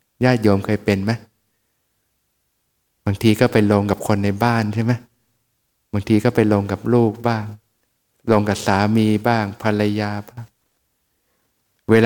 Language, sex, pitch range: Thai, male, 105-120 Hz